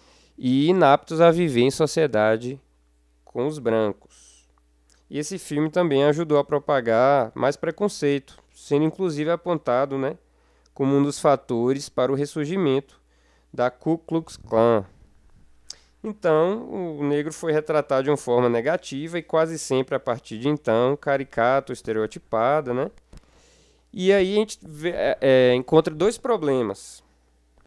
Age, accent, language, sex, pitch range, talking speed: 20-39, Brazilian, Portuguese, male, 105-155 Hz, 130 wpm